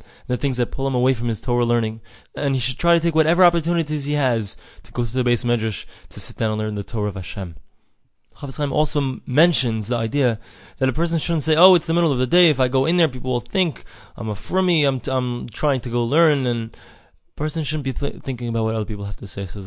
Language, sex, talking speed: English, male, 265 wpm